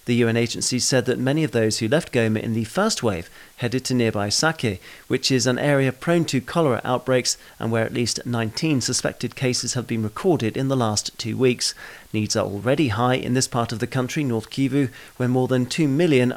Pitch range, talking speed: 110-140 Hz, 215 wpm